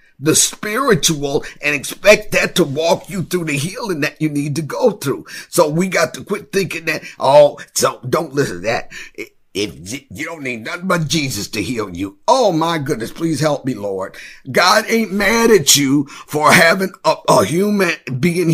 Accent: American